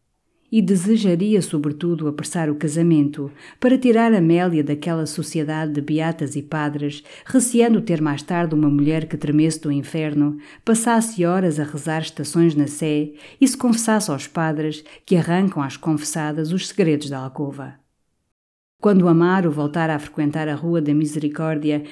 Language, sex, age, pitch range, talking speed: Portuguese, female, 50-69, 150-180 Hz, 150 wpm